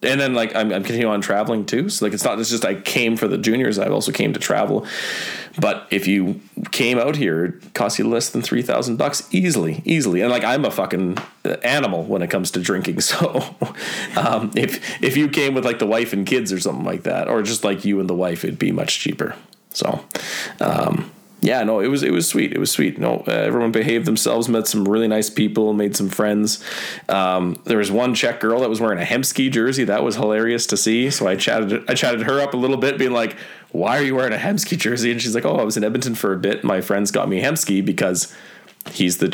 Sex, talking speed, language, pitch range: male, 240 wpm, English, 100-120 Hz